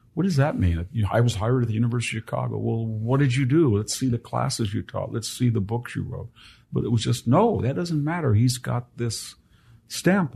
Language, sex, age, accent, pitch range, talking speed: English, male, 50-69, American, 100-125 Hz, 240 wpm